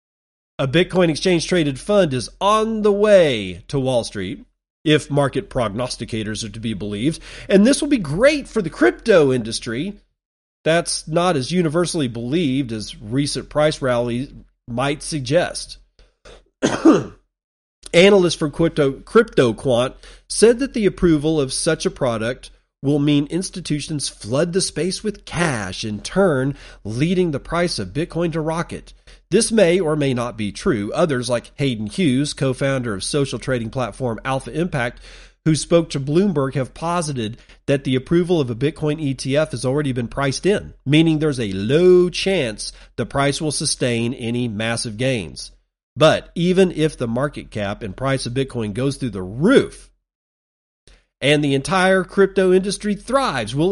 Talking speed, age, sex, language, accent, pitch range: 155 wpm, 40-59, male, English, American, 125-175 Hz